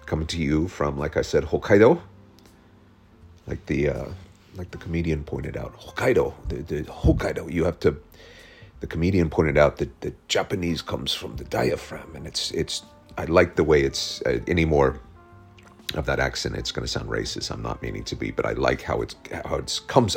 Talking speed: 195 wpm